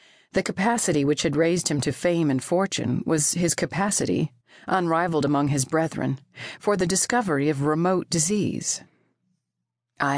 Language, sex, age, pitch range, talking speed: English, female, 40-59, 145-190 Hz, 140 wpm